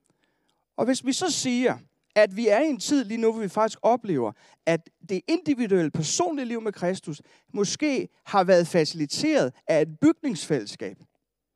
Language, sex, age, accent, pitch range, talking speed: Danish, male, 30-49, native, 160-240 Hz, 160 wpm